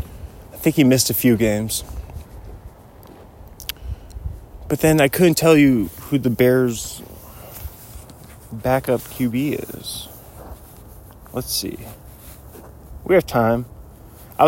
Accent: American